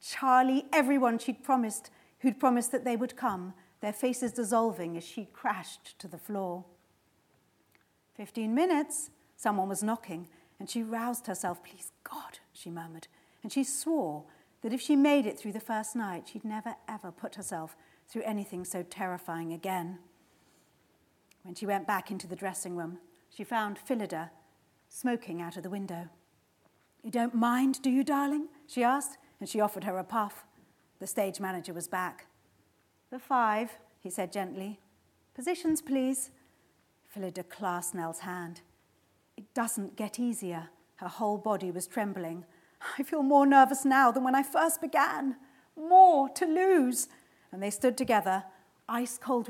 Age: 40-59